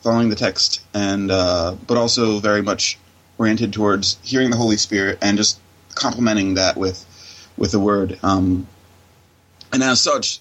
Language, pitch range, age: English, 95-115 Hz, 30-49